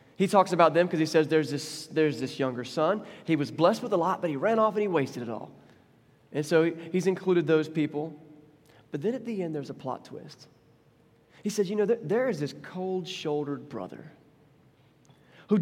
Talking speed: 210 wpm